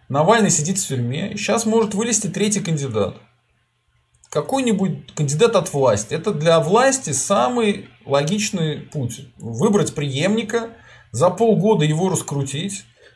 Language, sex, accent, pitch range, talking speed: Russian, male, native, 130-200 Hz, 115 wpm